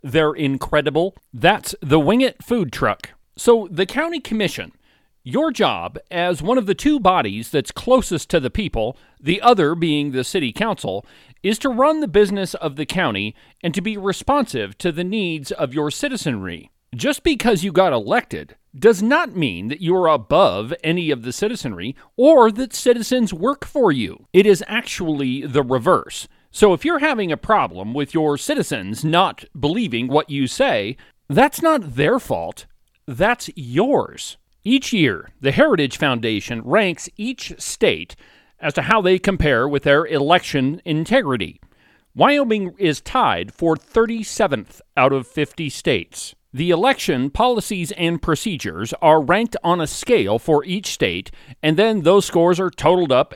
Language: English